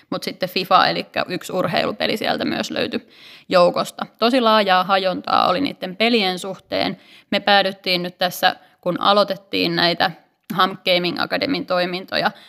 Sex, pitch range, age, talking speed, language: female, 175-205 Hz, 20-39, 135 wpm, Finnish